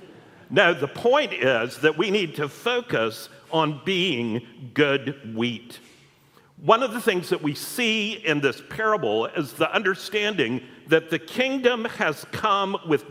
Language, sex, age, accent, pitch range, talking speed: English, male, 60-79, American, 145-210 Hz, 145 wpm